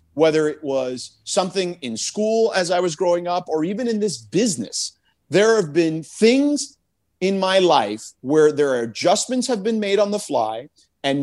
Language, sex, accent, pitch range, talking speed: English, male, American, 155-230 Hz, 180 wpm